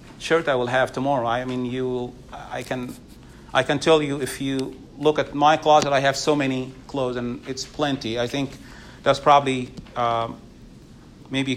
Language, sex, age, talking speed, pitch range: English, male, 40-59, 175 wpm, 130-160 Hz